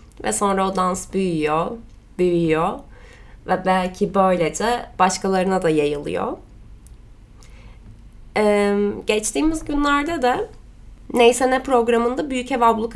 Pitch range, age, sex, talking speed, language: 195-250 Hz, 20-39, female, 95 wpm, Turkish